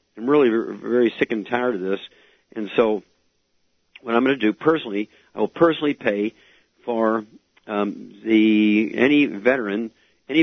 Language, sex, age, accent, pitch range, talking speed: English, male, 50-69, American, 105-120 Hz, 150 wpm